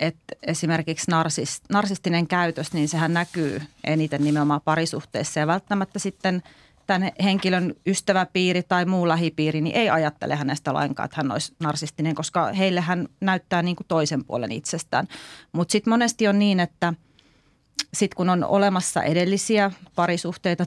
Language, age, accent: Finnish, 30-49, native